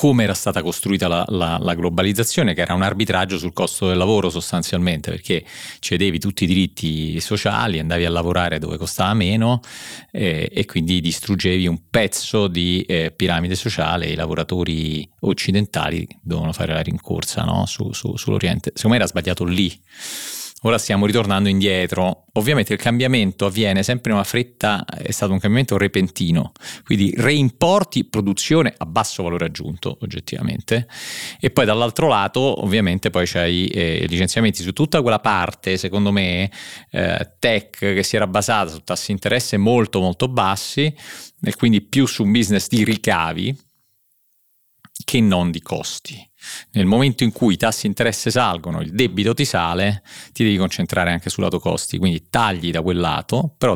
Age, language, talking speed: 40-59, Italian, 160 wpm